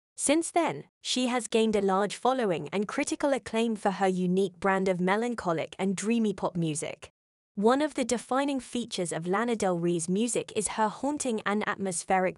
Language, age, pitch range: English, 20-39, 185-240 Hz